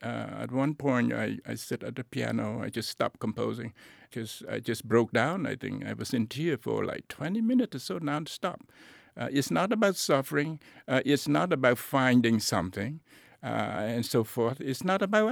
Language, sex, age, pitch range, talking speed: English, male, 60-79, 115-160 Hz, 195 wpm